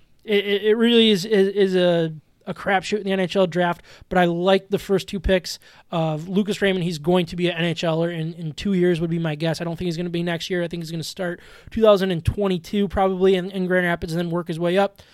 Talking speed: 260 wpm